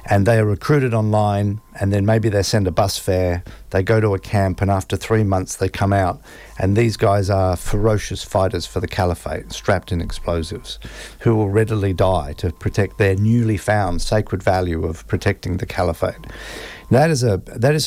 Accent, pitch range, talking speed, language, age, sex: Australian, 95-115 Hz, 190 wpm, English, 50-69, male